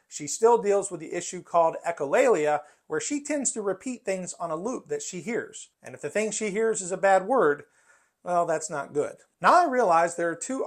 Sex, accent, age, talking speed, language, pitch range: male, American, 40-59, 225 wpm, English, 170-230 Hz